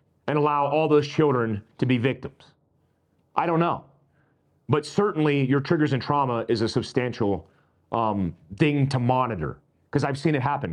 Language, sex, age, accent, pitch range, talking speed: English, male, 40-59, American, 115-145 Hz, 160 wpm